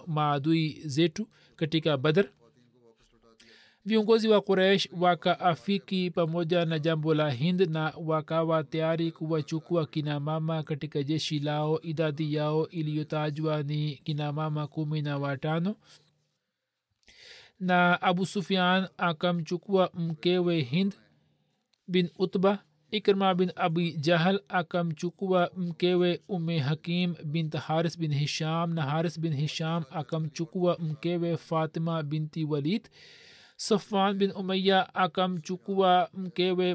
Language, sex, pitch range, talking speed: Swahili, male, 155-180 Hz, 110 wpm